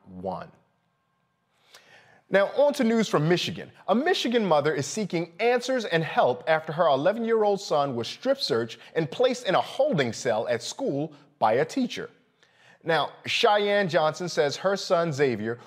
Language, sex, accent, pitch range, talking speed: English, male, American, 130-195 Hz, 150 wpm